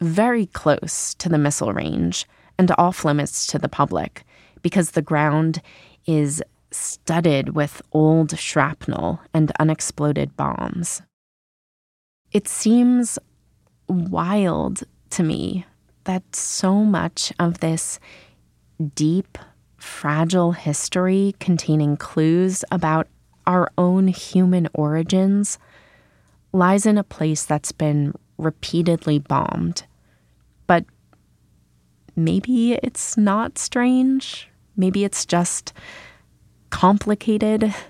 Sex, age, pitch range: female, 20-39, 150-190 Hz